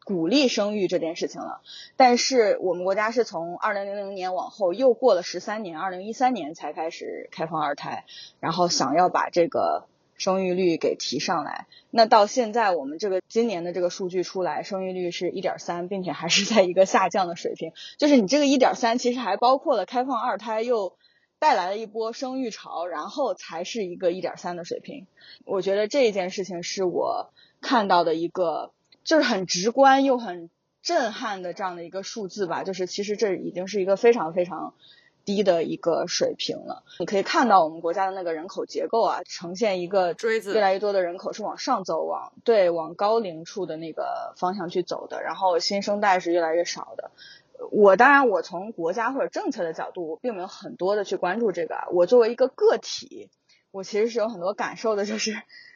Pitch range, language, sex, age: 180-235 Hz, English, female, 20-39